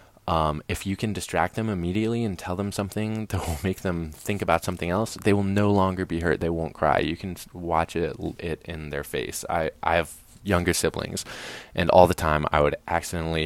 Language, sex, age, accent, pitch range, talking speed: English, male, 20-39, American, 80-100 Hz, 215 wpm